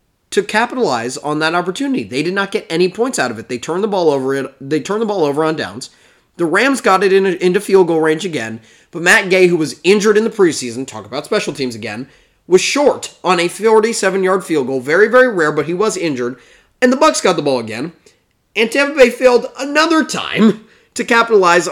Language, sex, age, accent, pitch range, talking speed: English, male, 30-49, American, 165-240 Hz, 225 wpm